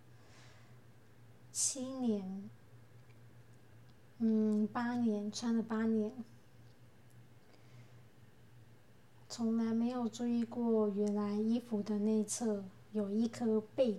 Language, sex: Chinese, female